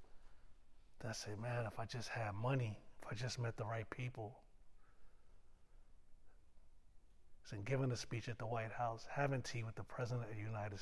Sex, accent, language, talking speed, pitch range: male, American, English, 170 wpm, 105-130 Hz